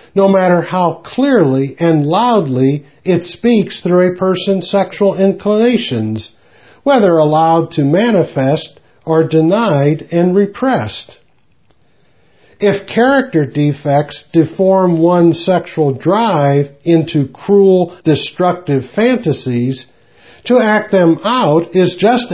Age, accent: 60-79, American